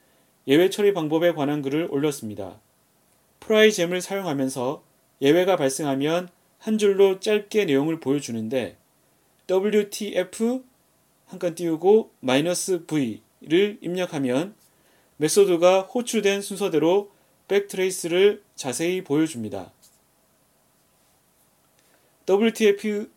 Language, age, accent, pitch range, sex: Korean, 30-49, native, 145-200 Hz, male